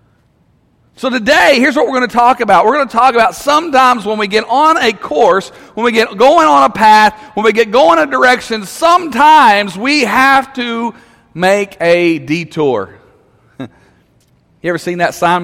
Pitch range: 185-275 Hz